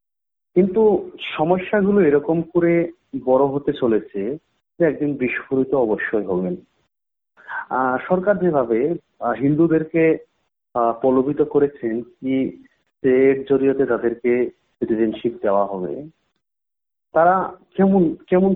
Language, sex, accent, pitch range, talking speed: English, male, Indian, 125-180 Hz, 75 wpm